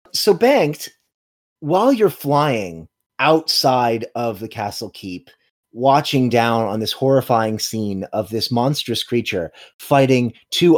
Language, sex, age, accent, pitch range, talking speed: English, male, 30-49, American, 110-150 Hz, 120 wpm